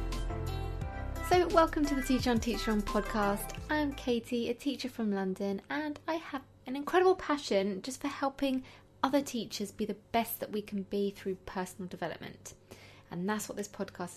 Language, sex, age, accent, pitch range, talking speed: English, female, 20-39, British, 195-260 Hz, 175 wpm